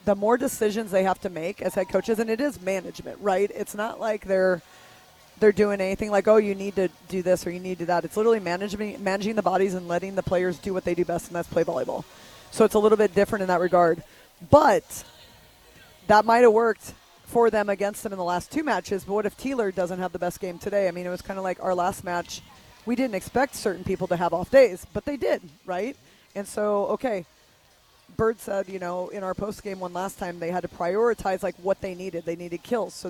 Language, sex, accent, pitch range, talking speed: English, female, American, 180-215 Hz, 245 wpm